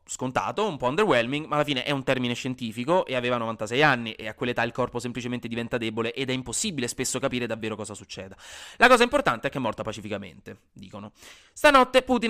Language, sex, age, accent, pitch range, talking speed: Italian, male, 30-49, native, 125-180 Hz, 205 wpm